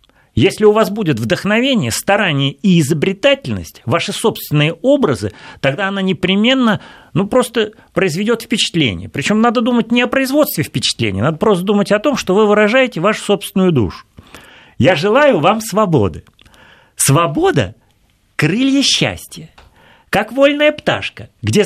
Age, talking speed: 40-59, 135 wpm